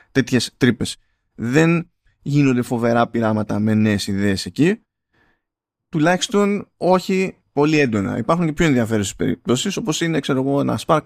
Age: 20-39